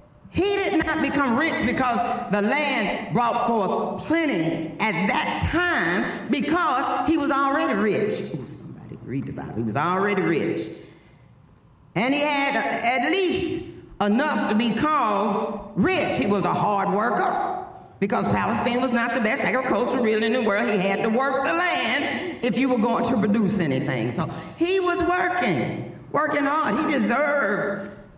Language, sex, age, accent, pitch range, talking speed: English, female, 40-59, American, 170-270 Hz, 160 wpm